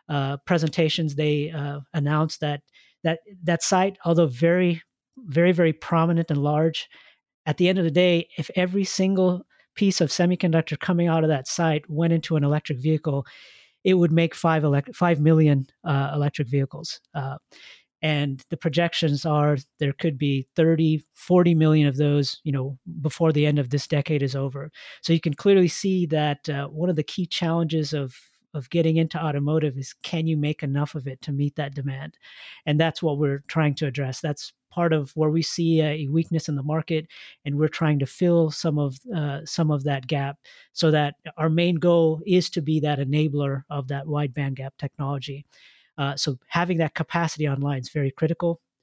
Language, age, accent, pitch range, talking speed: English, 40-59, American, 145-165 Hz, 190 wpm